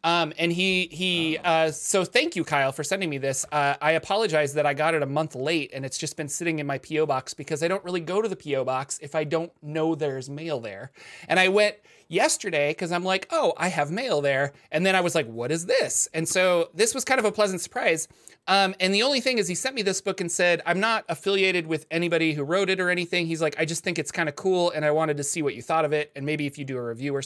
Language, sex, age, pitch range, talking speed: English, male, 30-49, 150-190 Hz, 280 wpm